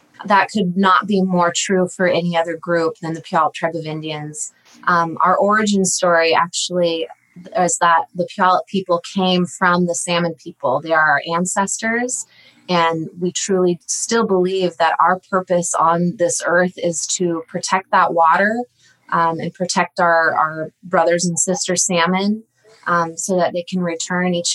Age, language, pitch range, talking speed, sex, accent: 20-39, English, 160-185 Hz, 165 wpm, female, American